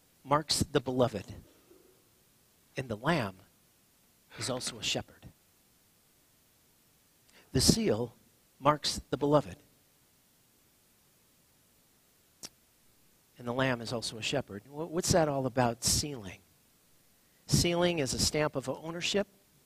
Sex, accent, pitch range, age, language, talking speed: male, American, 130-170 Hz, 50-69, English, 105 wpm